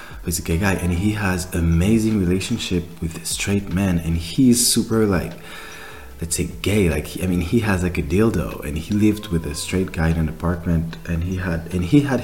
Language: English